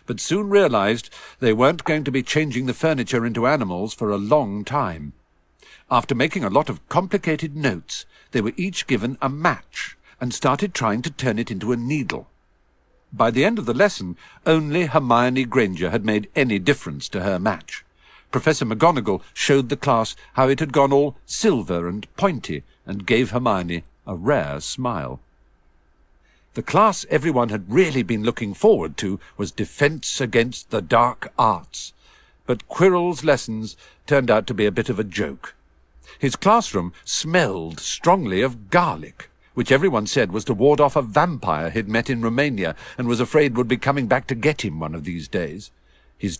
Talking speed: 175 wpm